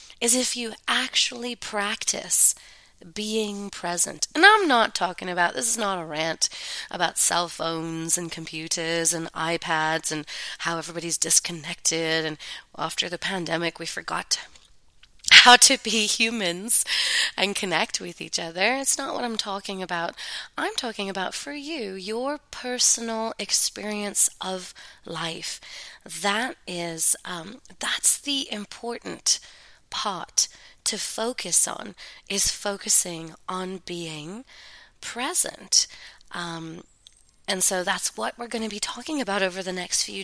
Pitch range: 170-225 Hz